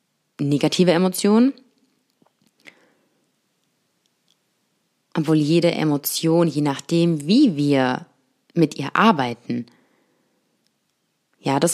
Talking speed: 70 wpm